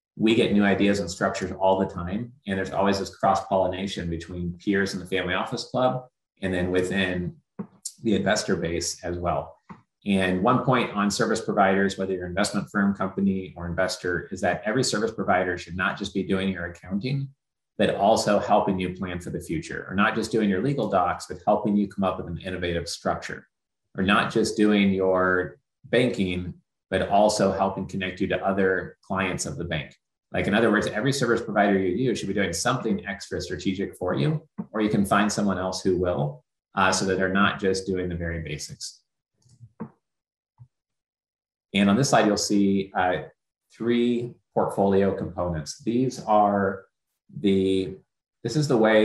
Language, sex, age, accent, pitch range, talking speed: English, male, 30-49, American, 90-105 Hz, 180 wpm